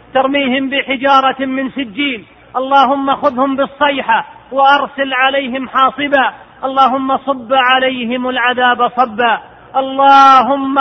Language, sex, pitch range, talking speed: Arabic, male, 250-270 Hz, 90 wpm